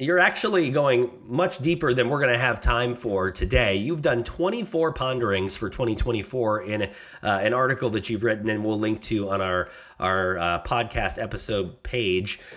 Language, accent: English, American